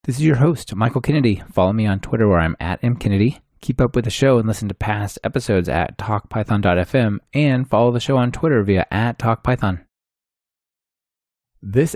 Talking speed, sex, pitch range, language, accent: 180 wpm, male, 100-135 Hz, English, American